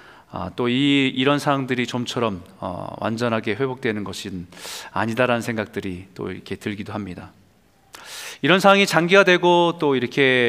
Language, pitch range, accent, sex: Korean, 110-160 Hz, native, male